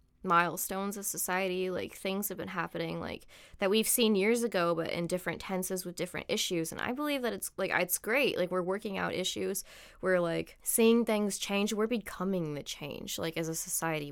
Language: English